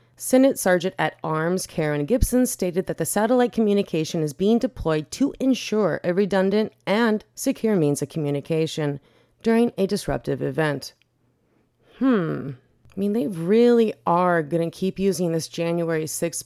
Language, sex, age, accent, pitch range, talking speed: English, female, 30-49, American, 155-205 Hz, 145 wpm